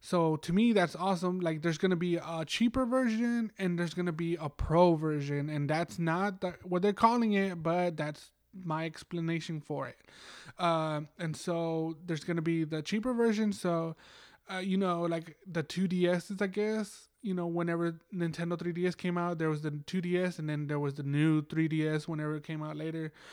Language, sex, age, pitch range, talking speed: English, male, 20-39, 150-180 Hz, 195 wpm